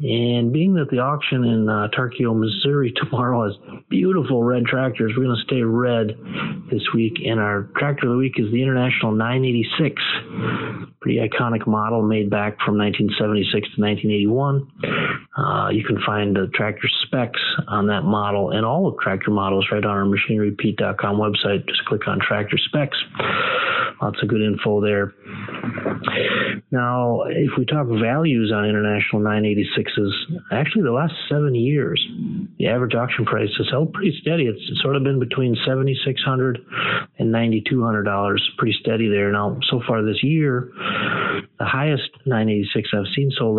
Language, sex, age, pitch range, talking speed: English, male, 30-49, 105-135 Hz, 155 wpm